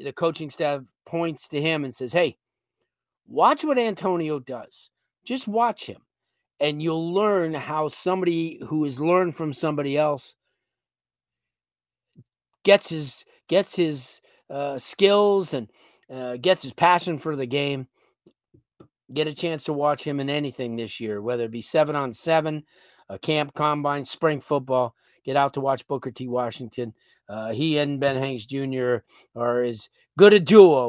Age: 40-59